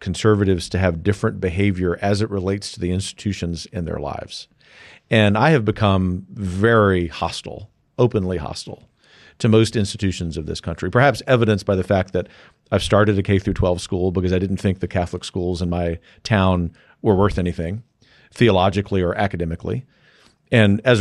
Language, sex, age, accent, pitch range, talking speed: English, male, 40-59, American, 95-110 Hz, 165 wpm